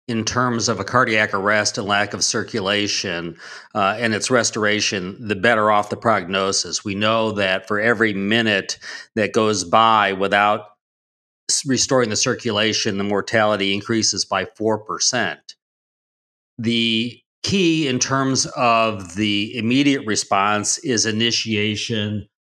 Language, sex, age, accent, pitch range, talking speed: English, male, 40-59, American, 100-120 Hz, 125 wpm